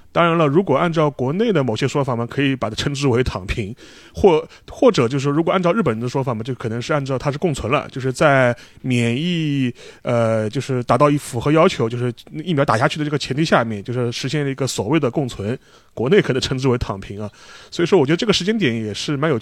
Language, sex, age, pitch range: Chinese, male, 30-49, 125-165 Hz